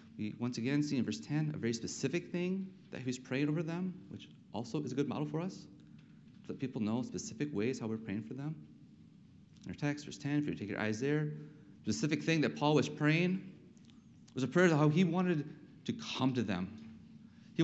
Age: 30-49